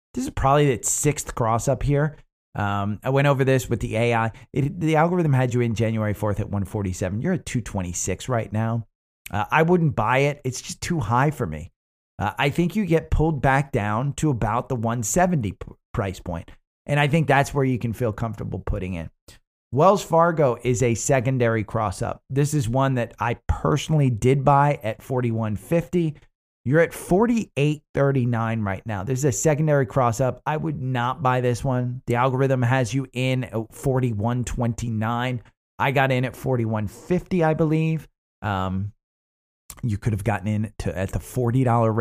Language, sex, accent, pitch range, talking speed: English, male, American, 110-140 Hz, 175 wpm